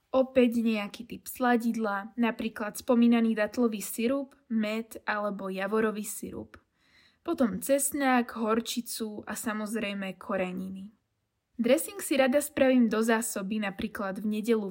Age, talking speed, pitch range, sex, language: 20-39, 110 wpm, 215-250 Hz, female, Slovak